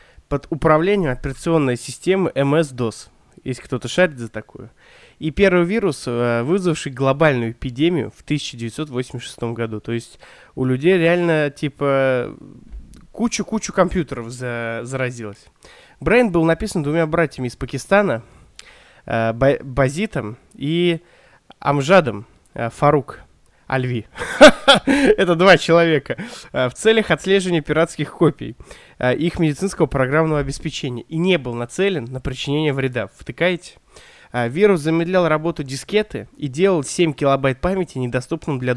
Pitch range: 125-175 Hz